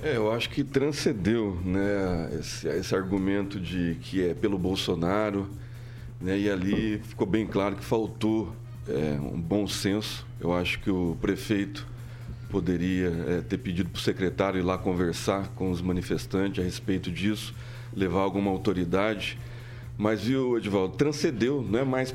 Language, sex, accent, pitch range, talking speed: Portuguese, male, Brazilian, 95-120 Hz, 155 wpm